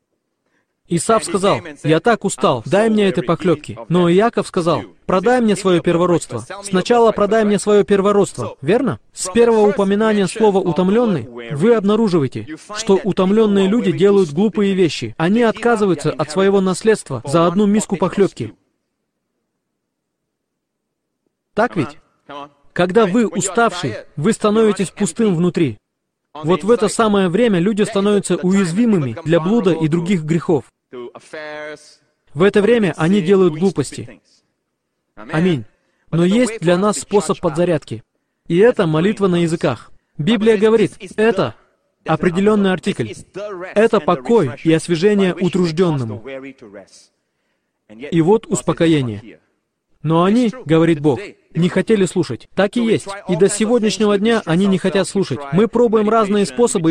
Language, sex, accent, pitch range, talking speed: Russian, male, native, 160-210 Hz, 125 wpm